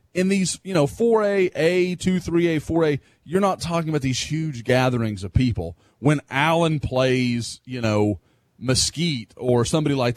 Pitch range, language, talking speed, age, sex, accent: 115-145 Hz, English, 160 wpm, 30-49, male, American